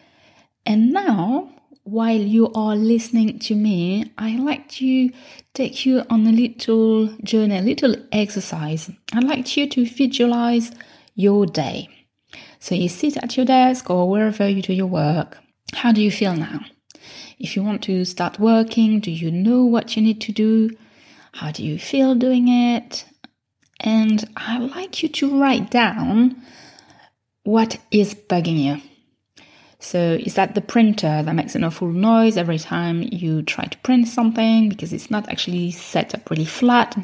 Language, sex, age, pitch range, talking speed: English, female, 30-49, 185-245 Hz, 165 wpm